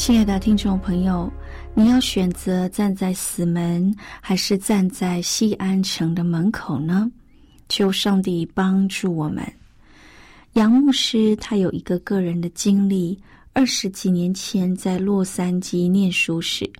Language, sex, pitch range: Chinese, female, 180-225 Hz